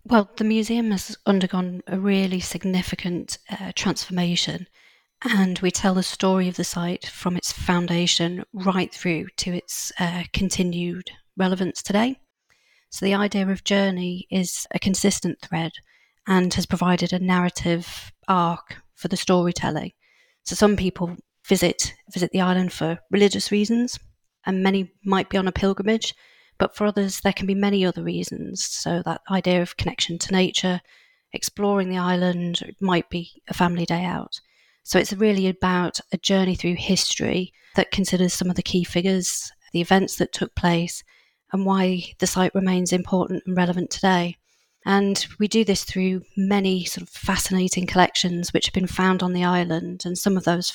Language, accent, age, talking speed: English, British, 40-59, 165 wpm